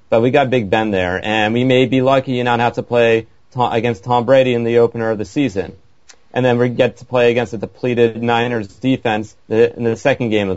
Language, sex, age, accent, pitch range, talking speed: English, male, 30-49, American, 110-120 Hz, 235 wpm